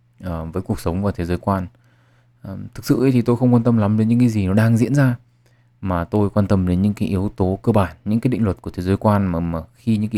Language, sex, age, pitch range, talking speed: Vietnamese, male, 20-39, 95-120 Hz, 295 wpm